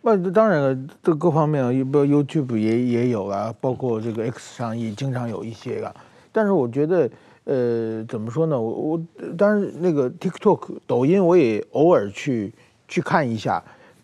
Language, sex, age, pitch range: Chinese, male, 50-69, 130-185 Hz